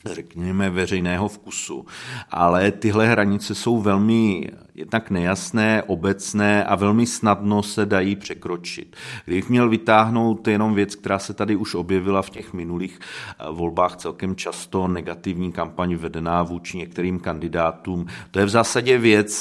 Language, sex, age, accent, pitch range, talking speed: Czech, male, 40-59, native, 85-100 Hz, 135 wpm